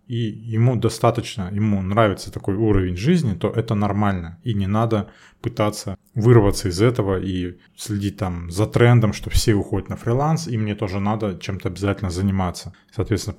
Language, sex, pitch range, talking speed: Russian, male, 100-115 Hz, 160 wpm